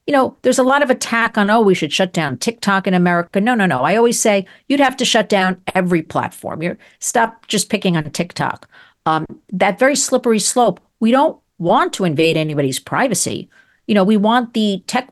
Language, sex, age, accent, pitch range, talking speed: English, female, 50-69, American, 175-235 Hz, 210 wpm